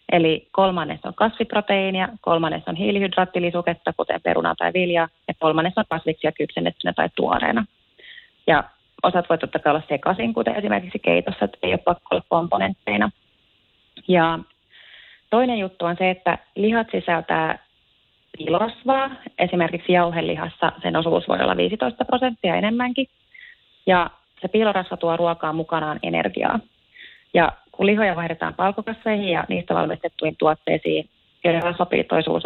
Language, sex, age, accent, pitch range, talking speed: Finnish, female, 30-49, native, 160-190 Hz, 130 wpm